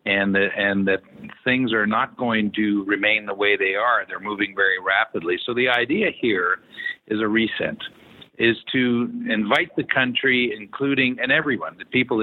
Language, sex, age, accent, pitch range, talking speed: English, male, 50-69, American, 110-150 Hz, 165 wpm